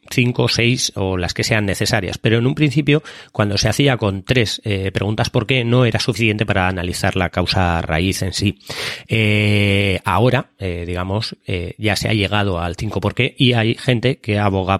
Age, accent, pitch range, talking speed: 30-49, Spanish, 95-125 Hz, 195 wpm